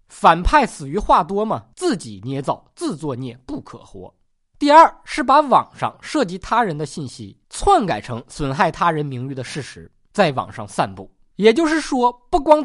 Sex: male